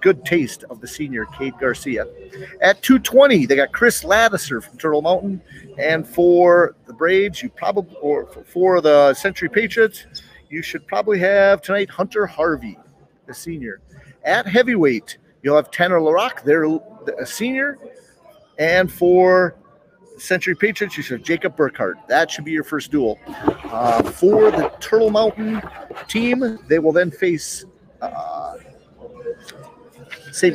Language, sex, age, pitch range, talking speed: English, male, 40-59, 150-215 Hz, 140 wpm